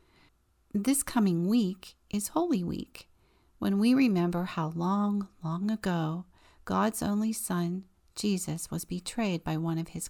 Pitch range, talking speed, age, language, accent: 165-205 Hz, 135 wpm, 40-59, English, American